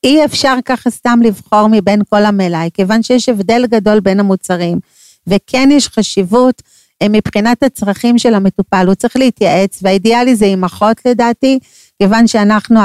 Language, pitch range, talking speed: Hebrew, 195-235 Hz, 145 wpm